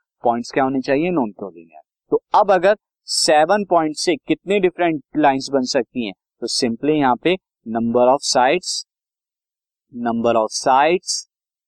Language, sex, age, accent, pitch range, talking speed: Hindi, male, 50-69, native, 125-175 Hz, 145 wpm